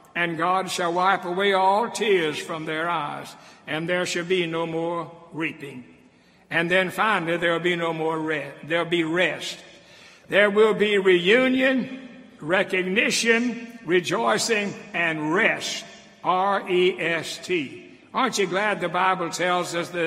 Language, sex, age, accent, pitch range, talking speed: English, male, 60-79, American, 165-200 Hz, 135 wpm